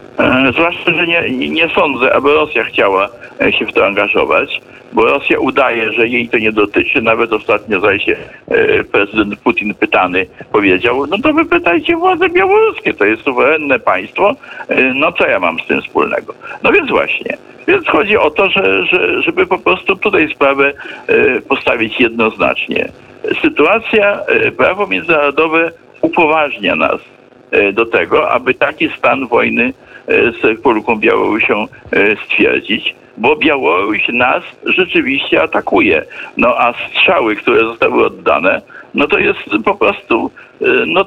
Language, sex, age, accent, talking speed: Polish, male, 60-79, native, 135 wpm